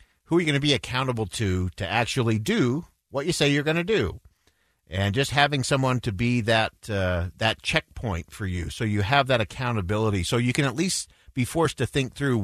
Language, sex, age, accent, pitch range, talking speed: English, male, 50-69, American, 95-130 Hz, 215 wpm